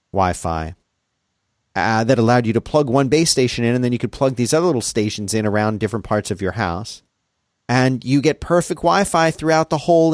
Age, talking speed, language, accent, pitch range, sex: 40-59, 200 wpm, English, American, 100-130 Hz, male